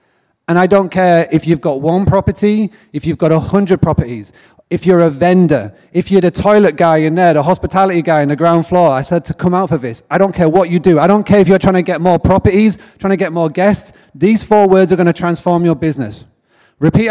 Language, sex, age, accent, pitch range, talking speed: English, male, 30-49, British, 155-195 Hz, 250 wpm